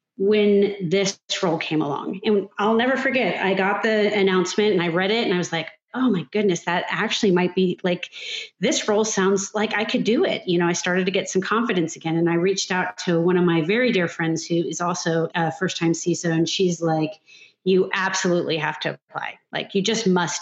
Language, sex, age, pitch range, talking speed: English, female, 30-49, 175-225 Hz, 225 wpm